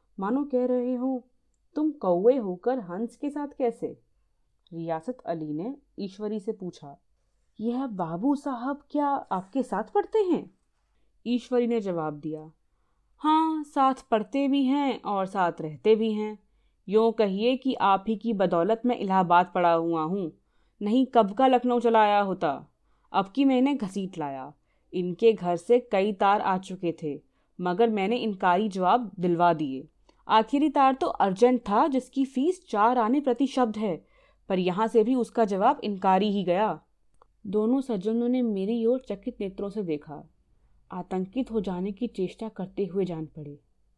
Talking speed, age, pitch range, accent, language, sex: 160 wpm, 30-49, 185-255 Hz, native, Hindi, female